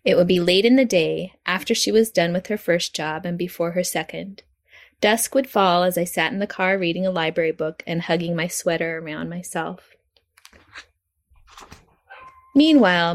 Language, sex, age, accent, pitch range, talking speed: English, female, 20-39, American, 165-200 Hz, 180 wpm